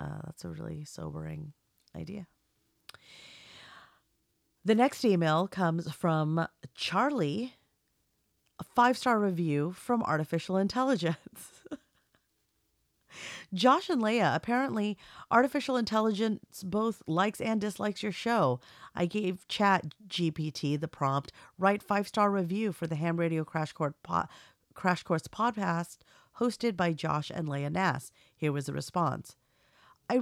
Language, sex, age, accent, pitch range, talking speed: English, female, 40-59, American, 145-205 Hz, 115 wpm